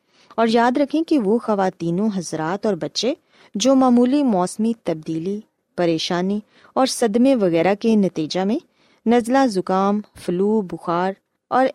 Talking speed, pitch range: 130 wpm, 190-265 Hz